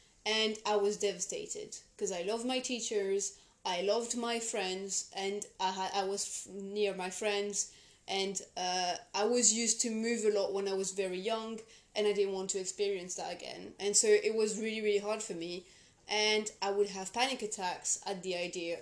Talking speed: 190 wpm